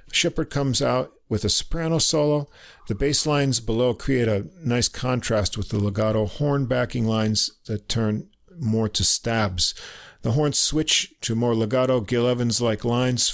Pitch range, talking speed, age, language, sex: 105-140 Hz, 160 wpm, 50-69, English, male